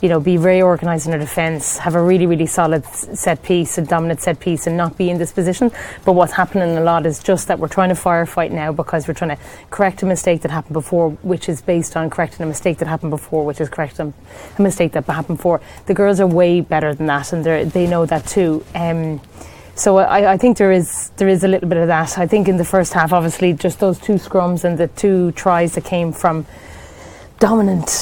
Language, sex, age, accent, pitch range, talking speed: English, female, 30-49, Irish, 165-185 Hz, 240 wpm